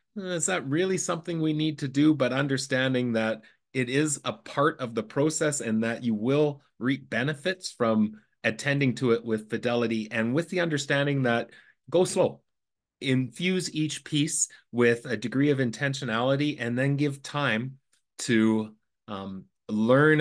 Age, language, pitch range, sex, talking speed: 30-49, English, 115-150 Hz, male, 155 wpm